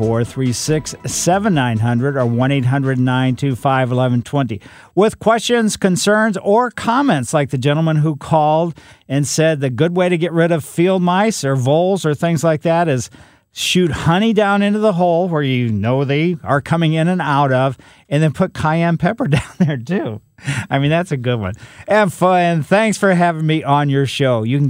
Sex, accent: male, American